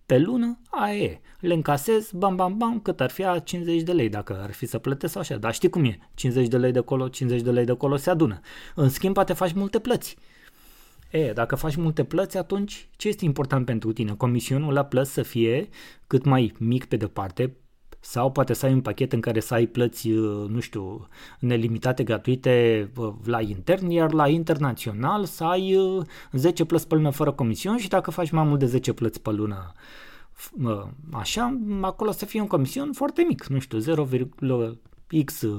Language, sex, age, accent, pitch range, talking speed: Romanian, male, 20-39, native, 125-175 Hz, 195 wpm